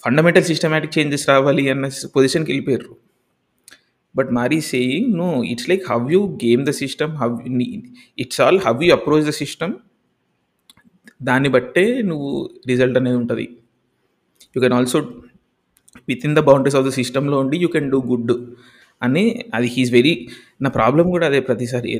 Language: Telugu